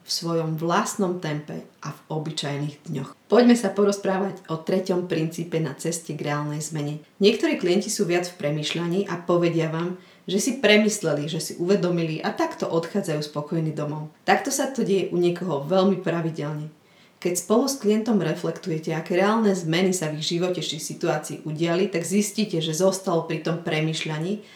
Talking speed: 165 wpm